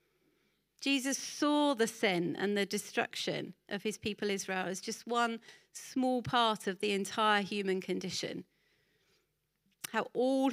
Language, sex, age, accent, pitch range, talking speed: English, female, 40-59, British, 195-250 Hz, 130 wpm